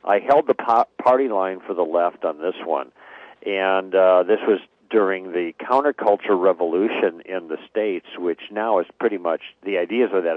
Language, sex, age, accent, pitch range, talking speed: English, male, 50-69, American, 95-115 Hz, 180 wpm